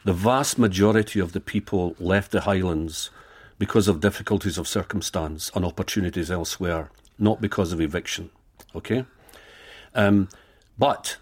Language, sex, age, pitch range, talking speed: English, male, 50-69, 95-110 Hz, 130 wpm